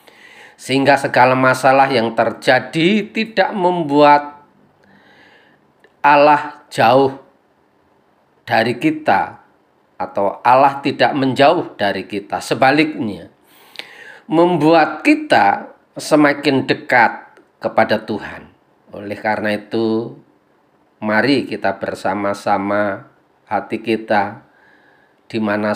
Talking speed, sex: 80 wpm, male